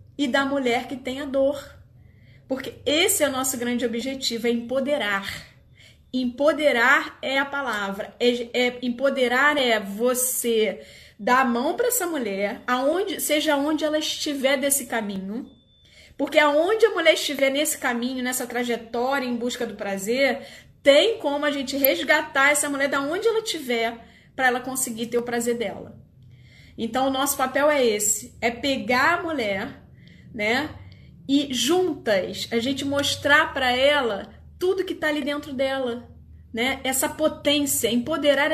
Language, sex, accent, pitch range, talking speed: Portuguese, female, Brazilian, 245-295 Hz, 145 wpm